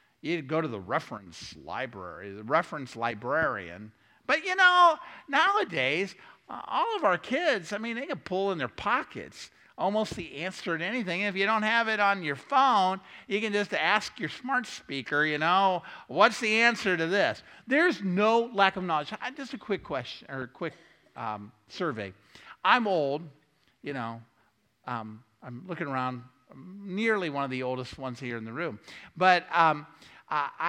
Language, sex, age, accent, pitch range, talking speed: English, male, 50-69, American, 130-220 Hz, 170 wpm